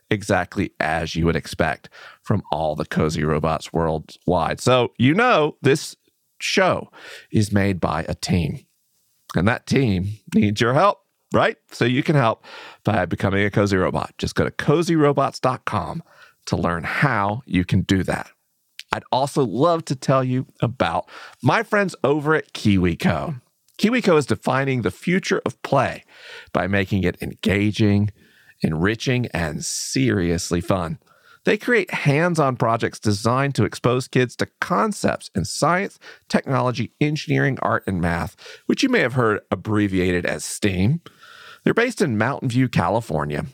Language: English